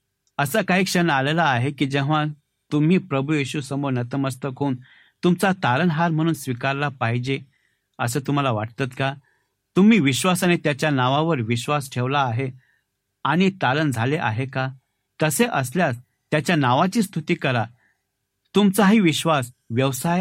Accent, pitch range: native, 125-165 Hz